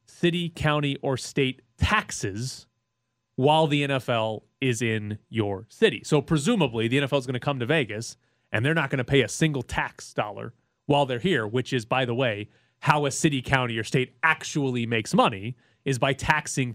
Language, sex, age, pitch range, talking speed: English, male, 30-49, 120-160 Hz, 185 wpm